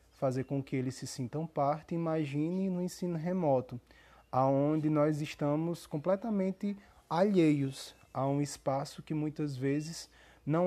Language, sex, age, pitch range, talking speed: Portuguese, male, 20-39, 130-160 Hz, 130 wpm